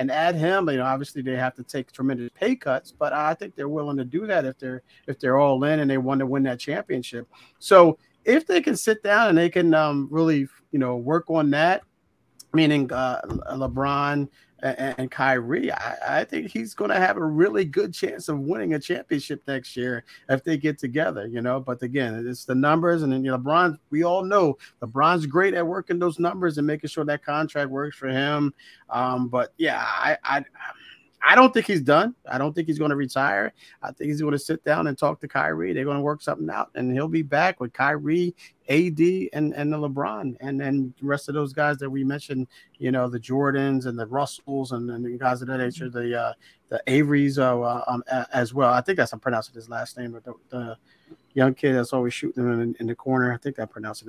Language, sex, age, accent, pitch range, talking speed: English, male, 40-59, American, 125-155 Hz, 230 wpm